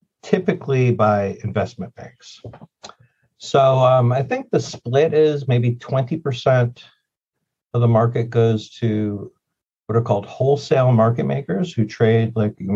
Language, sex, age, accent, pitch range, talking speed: English, male, 50-69, American, 105-130 Hz, 135 wpm